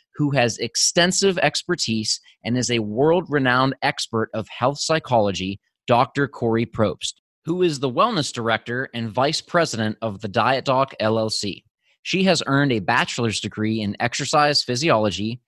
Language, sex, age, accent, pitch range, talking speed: English, male, 20-39, American, 110-145 Hz, 145 wpm